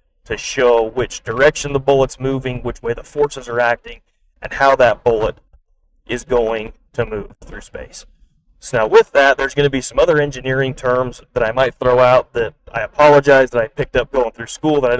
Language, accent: English, American